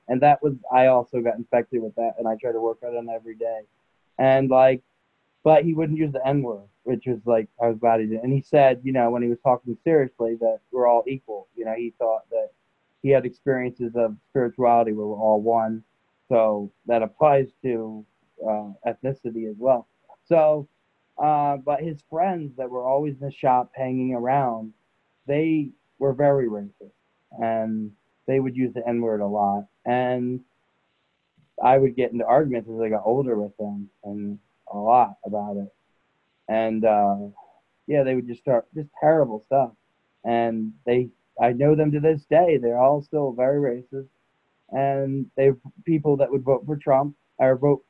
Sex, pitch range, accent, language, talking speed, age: male, 115-145 Hz, American, English, 185 wpm, 20-39